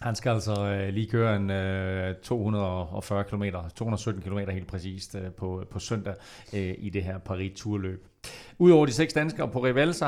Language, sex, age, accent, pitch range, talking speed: Danish, male, 40-59, native, 105-130 Hz, 165 wpm